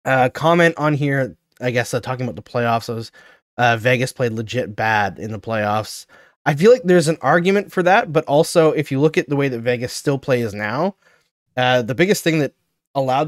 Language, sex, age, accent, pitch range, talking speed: English, male, 20-39, American, 110-135 Hz, 210 wpm